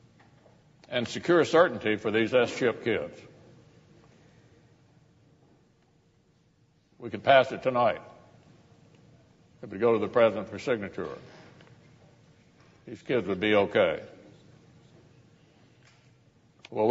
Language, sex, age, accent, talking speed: English, male, 60-79, American, 90 wpm